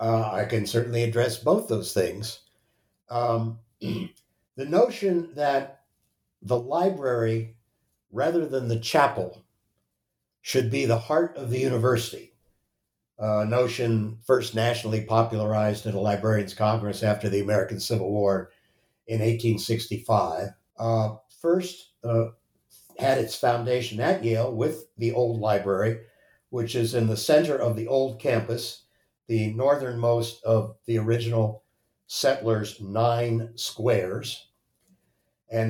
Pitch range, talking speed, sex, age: 105-120 Hz, 120 wpm, male, 60-79